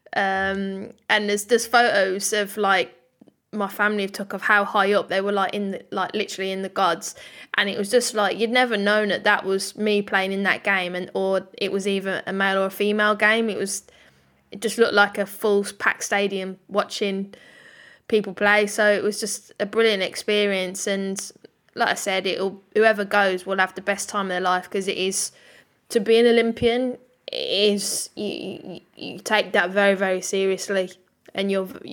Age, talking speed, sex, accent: 10-29, 195 wpm, female, British